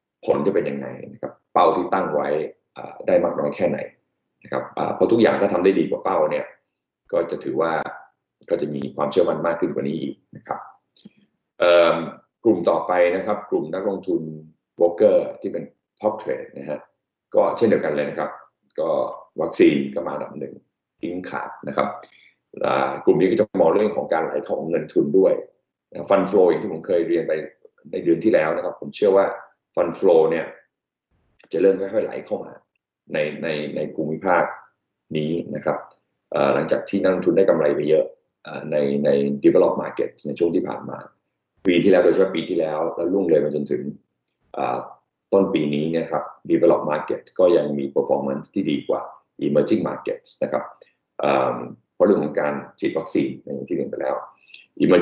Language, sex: Thai, male